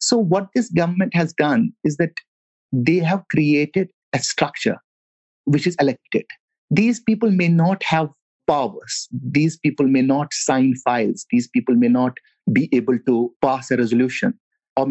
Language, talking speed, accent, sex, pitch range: English, 155 wpm, Indian, male, 135-210 Hz